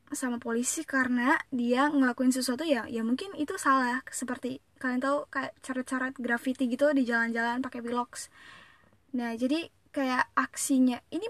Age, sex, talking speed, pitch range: 10-29, female, 150 wpm, 240-280 Hz